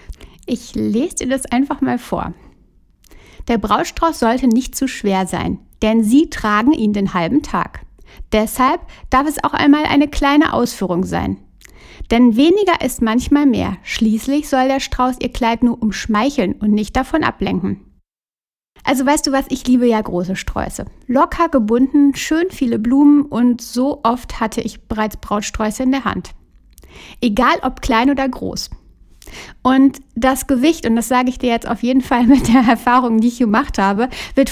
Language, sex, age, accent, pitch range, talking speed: German, female, 60-79, German, 215-270 Hz, 165 wpm